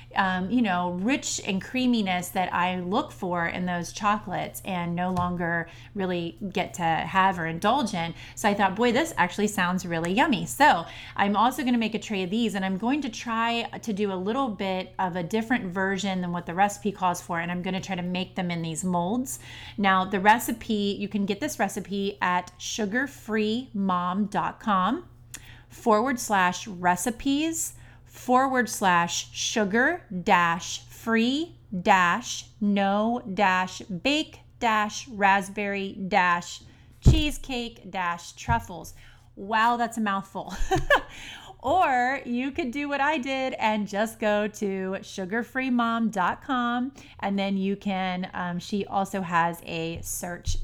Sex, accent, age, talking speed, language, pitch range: female, American, 30-49, 150 wpm, English, 180-225 Hz